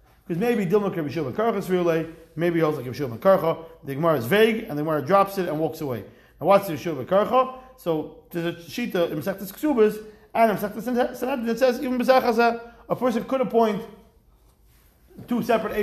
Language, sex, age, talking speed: English, male, 30-49, 165 wpm